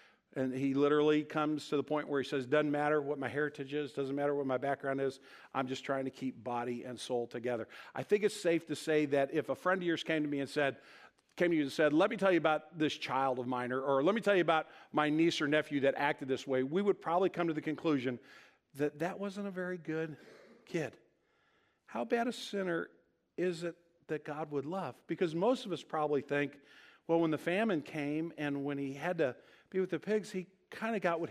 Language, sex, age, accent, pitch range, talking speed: English, male, 50-69, American, 140-180 Hz, 240 wpm